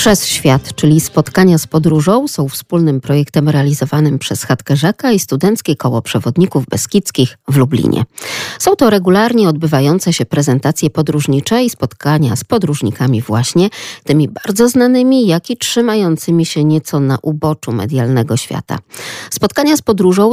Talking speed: 140 wpm